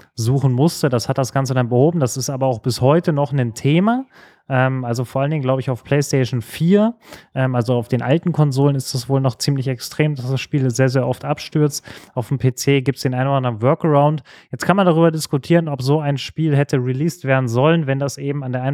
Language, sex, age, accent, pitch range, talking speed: German, male, 30-49, German, 130-150 Hz, 240 wpm